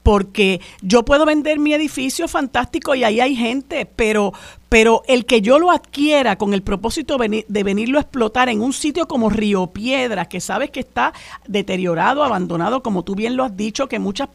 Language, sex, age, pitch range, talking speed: Spanish, female, 50-69, 205-270 Hz, 190 wpm